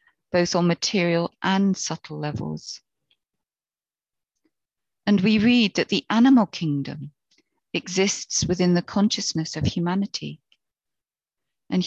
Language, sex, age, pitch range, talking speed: English, female, 40-59, 160-195 Hz, 100 wpm